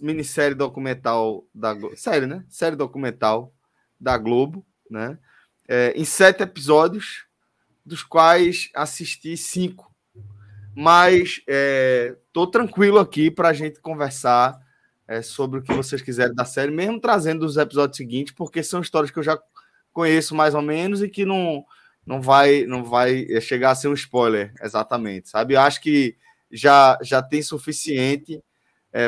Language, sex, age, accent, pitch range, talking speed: Portuguese, male, 20-39, Brazilian, 115-155 Hz, 150 wpm